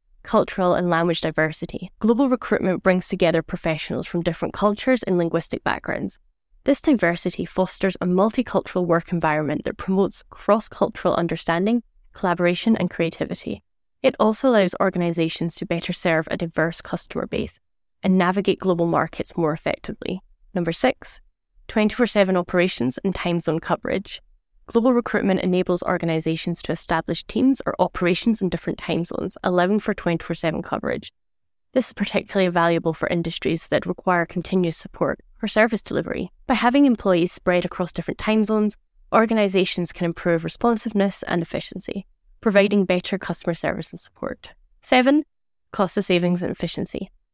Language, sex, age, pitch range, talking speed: English, female, 10-29, 170-210 Hz, 140 wpm